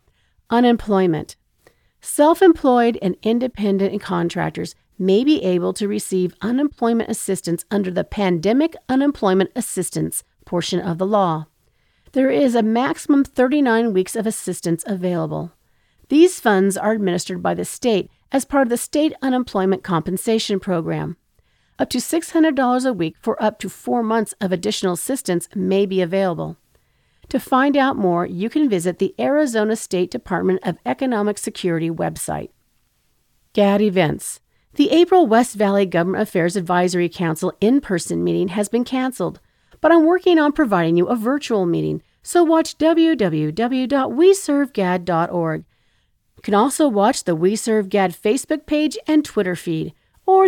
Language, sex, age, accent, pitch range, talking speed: English, female, 40-59, American, 180-260 Hz, 140 wpm